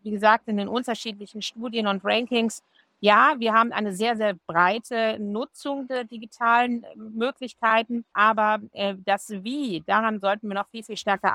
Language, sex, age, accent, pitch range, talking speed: German, female, 50-69, German, 210-240 Hz, 160 wpm